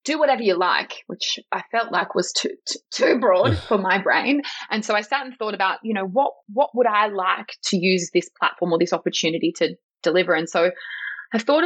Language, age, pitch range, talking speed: English, 20-39, 185-255 Hz, 225 wpm